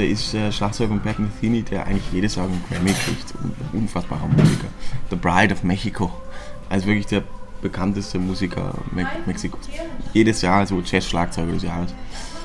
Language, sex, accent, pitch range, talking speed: German, male, German, 95-110 Hz, 165 wpm